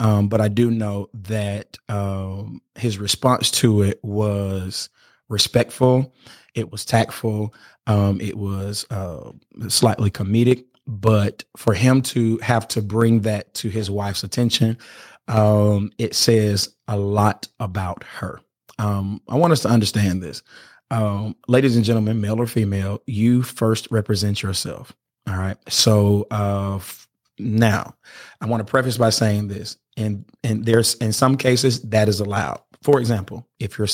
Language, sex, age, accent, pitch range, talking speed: English, male, 30-49, American, 100-115 Hz, 150 wpm